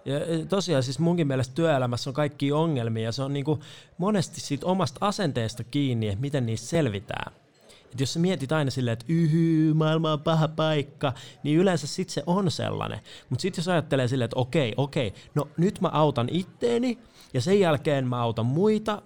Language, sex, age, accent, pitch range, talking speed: Finnish, male, 30-49, native, 125-170 Hz, 190 wpm